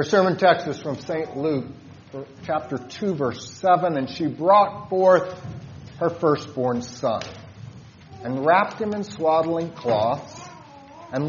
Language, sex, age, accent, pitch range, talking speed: English, male, 40-59, American, 120-185 Hz, 135 wpm